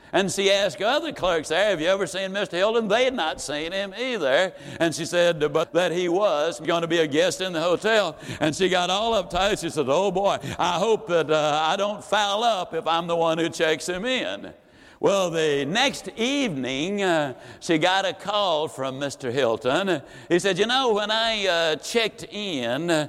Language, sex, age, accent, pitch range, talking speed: English, male, 60-79, American, 165-225 Hz, 205 wpm